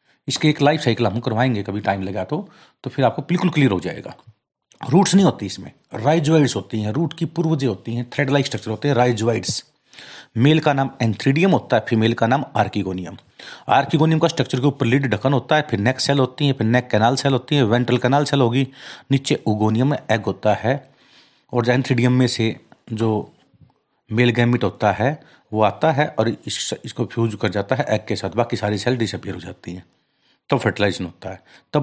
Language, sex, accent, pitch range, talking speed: Hindi, male, native, 105-140 Hz, 205 wpm